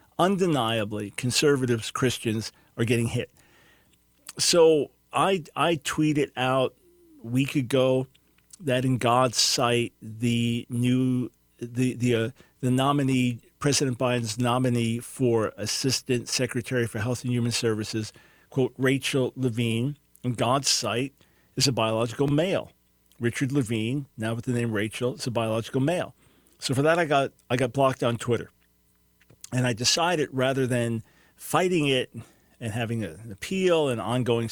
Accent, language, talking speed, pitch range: American, English, 140 wpm, 115-140 Hz